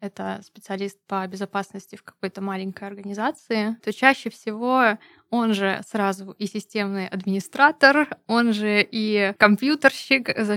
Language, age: Russian, 20-39